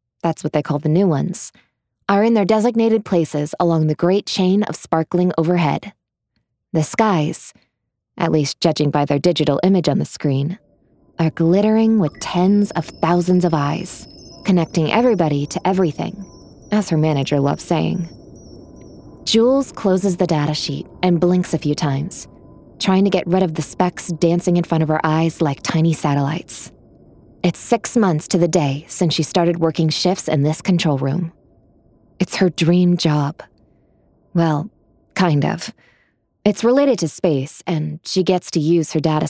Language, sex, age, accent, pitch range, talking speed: English, female, 20-39, American, 150-185 Hz, 165 wpm